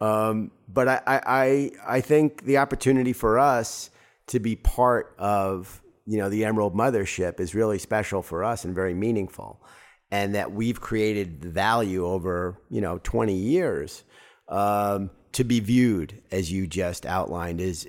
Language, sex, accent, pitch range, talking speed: English, male, American, 90-110 Hz, 155 wpm